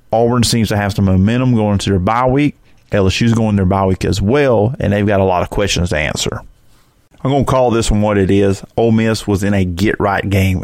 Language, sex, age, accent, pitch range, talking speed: English, male, 30-49, American, 100-115 Hz, 245 wpm